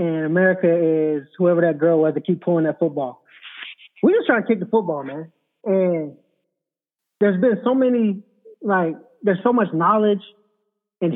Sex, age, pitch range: male, 20-39, 155-205 Hz